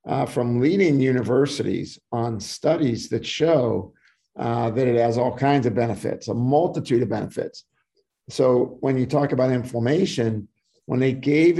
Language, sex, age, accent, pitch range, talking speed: English, male, 50-69, American, 120-150 Hz, 150 wpm